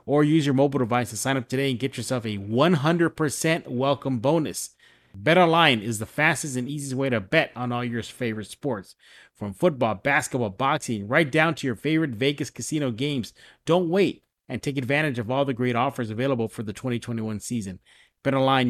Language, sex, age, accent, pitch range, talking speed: English, male, 30-49, American, 130-170 Hz, 185 wpm